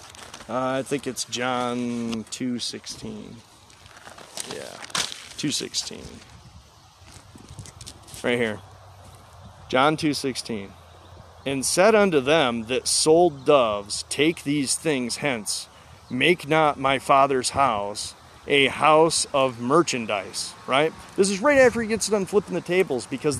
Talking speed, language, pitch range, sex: 110 wpm, English, 110-155 Hz, male